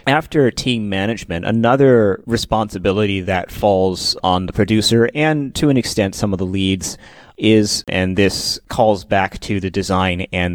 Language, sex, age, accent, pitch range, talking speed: English, male, 30-49, American, 95-115 Hz, 155 wpm